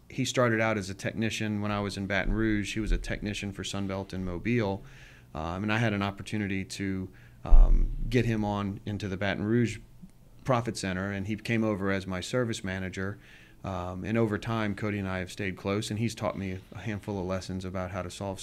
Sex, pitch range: male, 95-110 Hz